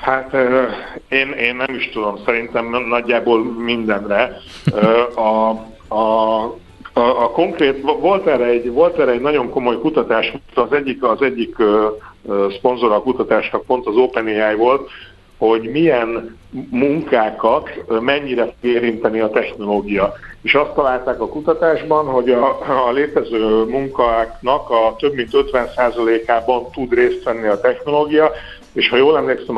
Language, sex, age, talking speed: Hungarian, male, 60-79, 130 wpm